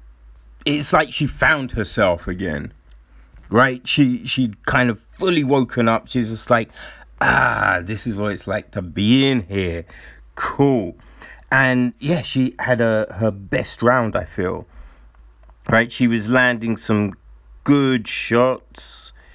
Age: 30-49